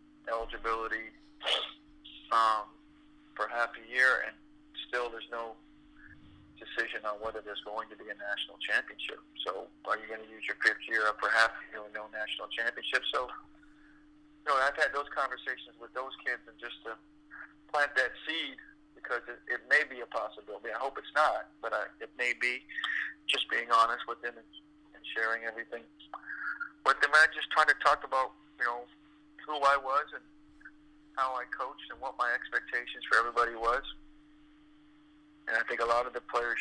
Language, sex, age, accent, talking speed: English, male, 40-59, American, 175 wpm